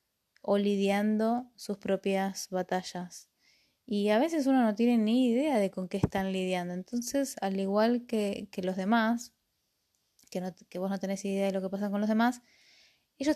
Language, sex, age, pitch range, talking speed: Spanish, female, 20-39, 190-230 Hz, 180 wpm